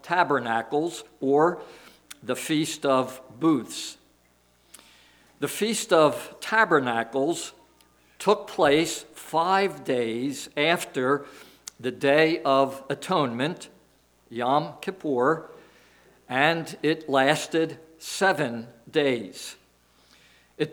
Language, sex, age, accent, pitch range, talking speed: English, male, 60-79, American, 135-175 Hz, 80 wpm